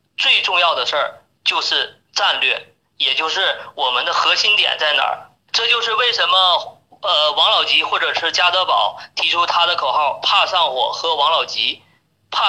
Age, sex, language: 30-49, male, Chinese